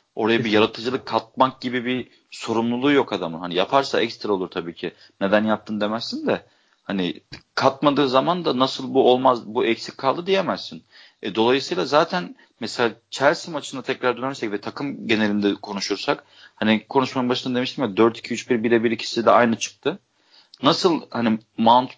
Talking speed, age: 160 wpm, 40-59